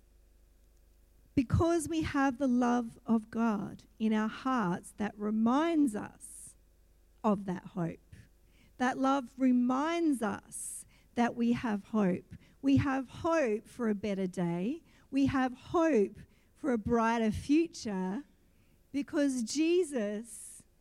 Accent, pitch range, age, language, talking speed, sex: Australian, 205-275 Hz, 50-69, English, 115 wpm, female